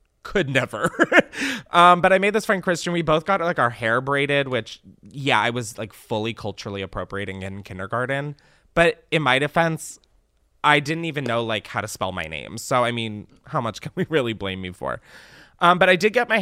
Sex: male